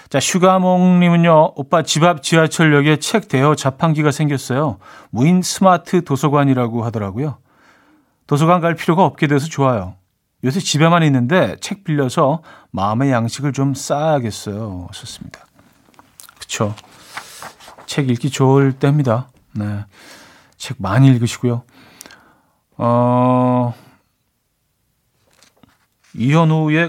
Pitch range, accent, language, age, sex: 125-170 Hz, native, Korean, 40-59, male